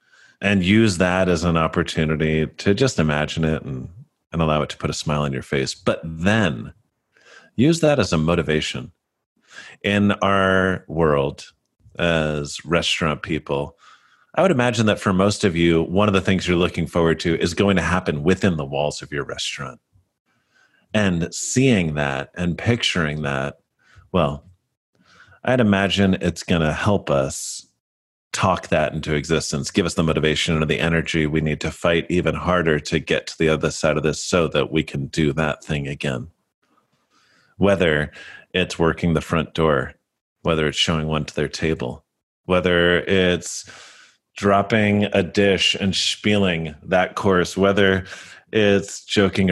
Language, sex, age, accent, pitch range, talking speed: English, male, 30-49, American, 80-95 Hz, 160 wpm